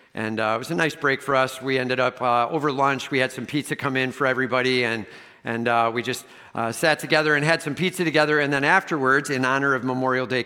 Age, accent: 50-69, American